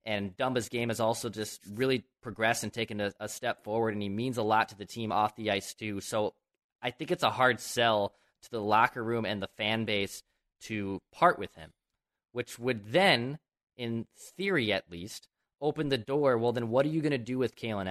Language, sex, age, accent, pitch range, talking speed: English, male, 20-39, American, 110-135 Hz, 220 wpm